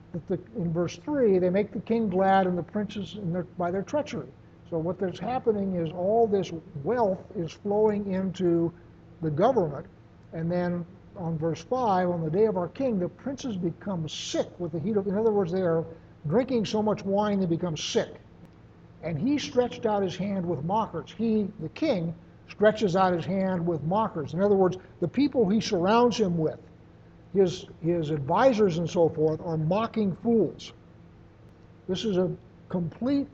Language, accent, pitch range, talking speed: English, American, 165-210 Hz, 175 wpm